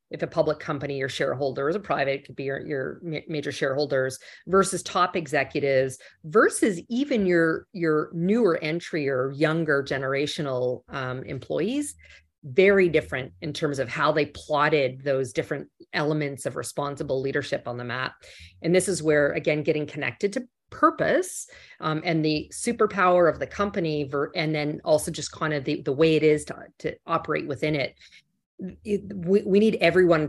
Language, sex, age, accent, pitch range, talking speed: English, female, 40-59, American, 140-185 Hz, 160 wpm